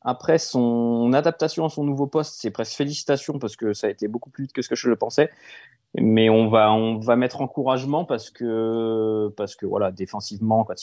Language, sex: French, male